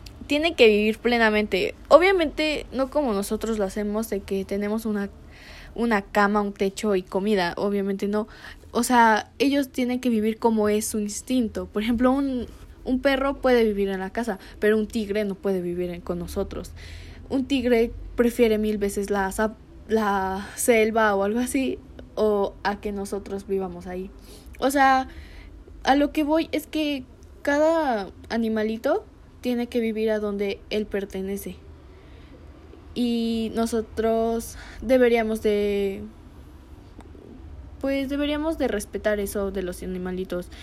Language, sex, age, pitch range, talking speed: Spanish, female, 10-29, 195-245 Hz, 140 wpm